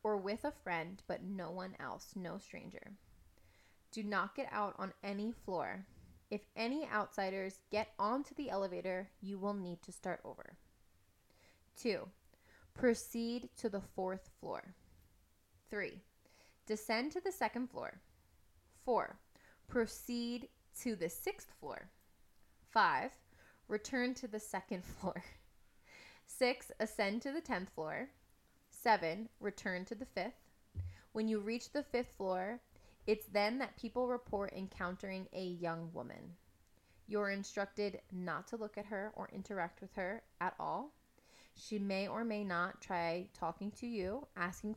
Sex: female